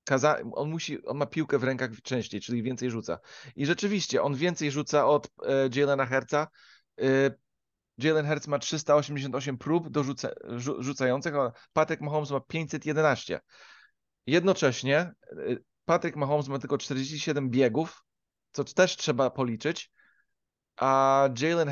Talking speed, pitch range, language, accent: 120 wpm, 135-165 Hz, Polish, native